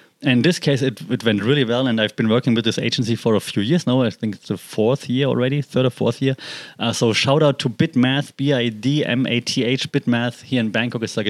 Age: 20-39